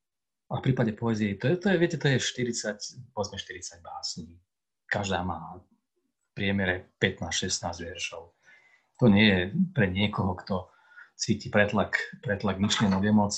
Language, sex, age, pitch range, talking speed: Slovak, male, 30-49, 95-125 Hz, 115 wpm